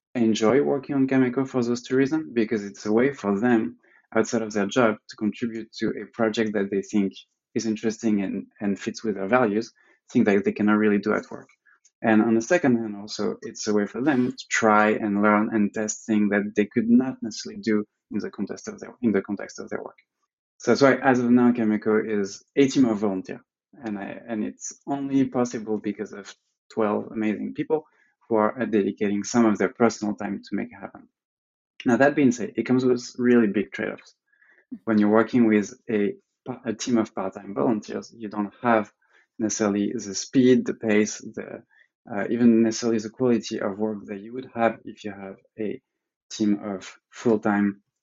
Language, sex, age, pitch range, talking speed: English, male, 20-39, 105-120 Hz, 200 wpm